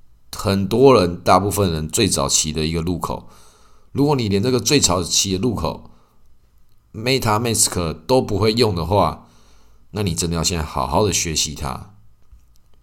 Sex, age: male, 20-39